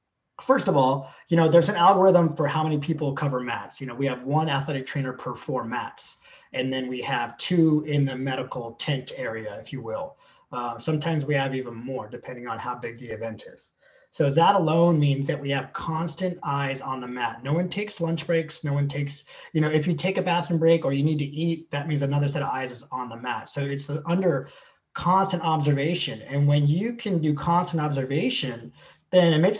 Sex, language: male, English